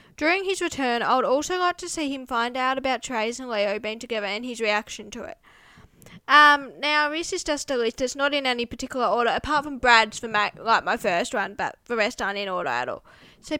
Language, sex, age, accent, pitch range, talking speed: English, female, 10-29, Australian, 235-290 Hz, 235 wpm